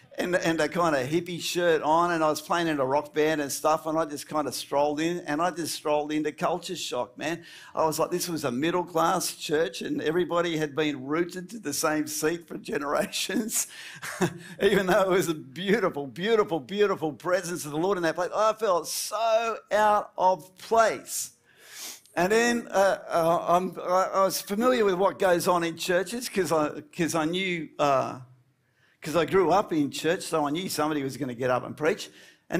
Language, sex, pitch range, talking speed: English, male, 150-195 Hz, 200 wpm